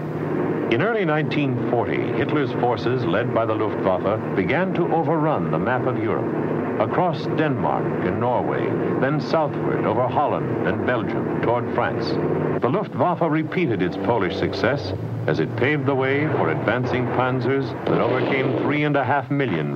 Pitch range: 95-155 Hz